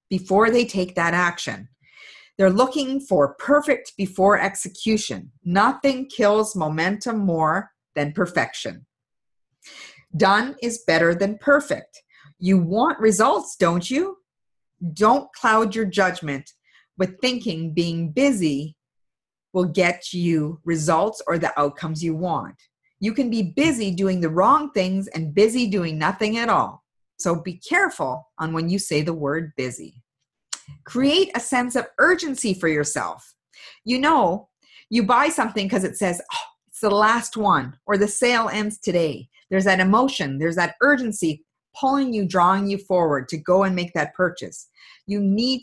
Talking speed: 145 wpm